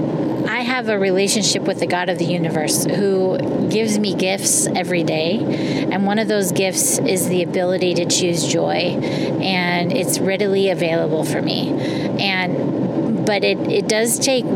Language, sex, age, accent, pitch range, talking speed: English, female, 30-49, American, 180-220 Hz, 160 wpm